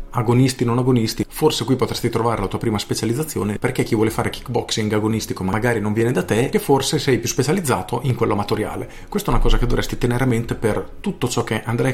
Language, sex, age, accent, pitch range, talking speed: Italian, male, 40-59, native, 110-130 Hz, 220 wpm